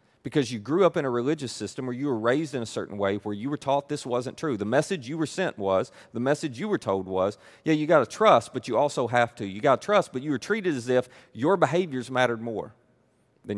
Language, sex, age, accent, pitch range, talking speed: English, male, 30-49, American, 125-170 Hz, 265 wpm